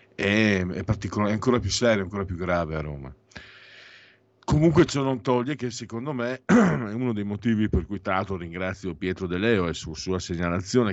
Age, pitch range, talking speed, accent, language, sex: 50-69, 85-110 Hz, 180 wpm, native, Italian, male